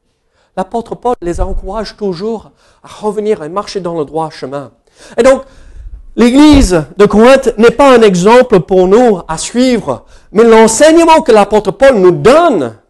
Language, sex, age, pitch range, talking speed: French, male, 50-69, 145-215 Hz, 155 wpm